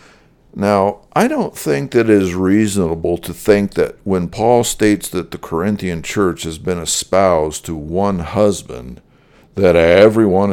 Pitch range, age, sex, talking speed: 90-105 Hz, 60-79, male, 140 wpm